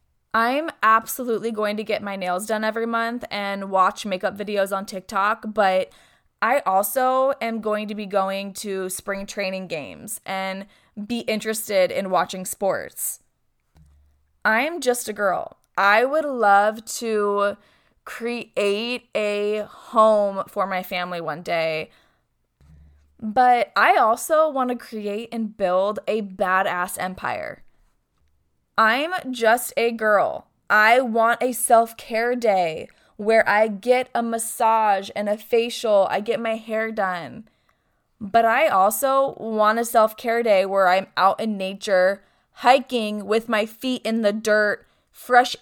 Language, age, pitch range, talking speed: English, 20-39, 195-235 Hz, 135 wpm